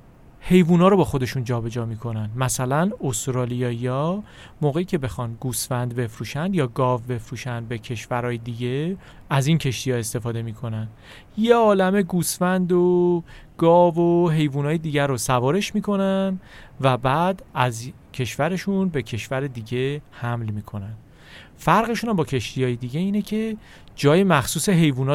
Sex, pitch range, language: male, 120-175 Hz, Persian